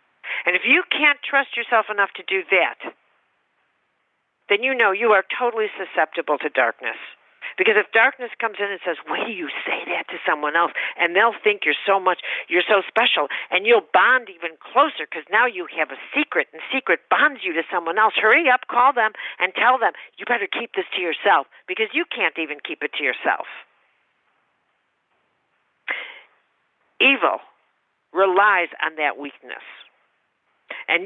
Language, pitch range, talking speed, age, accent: English, 165-240 Hz, 165 wpm, 50-69, American